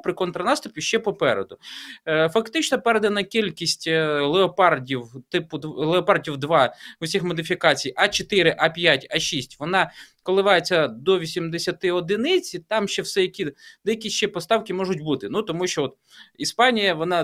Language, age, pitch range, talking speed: Ukrainian, 20-39, 165-210 Hz, 130 wpm